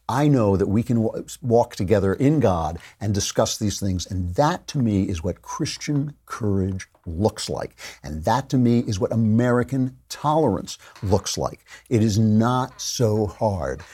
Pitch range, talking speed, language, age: 100-135 Hz, 170 wpm, English, 50-69